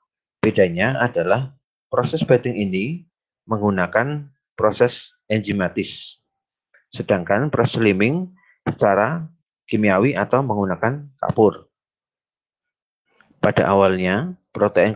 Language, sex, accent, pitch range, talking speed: Indonesian, male, native, 105-135 Hz, 75 wpm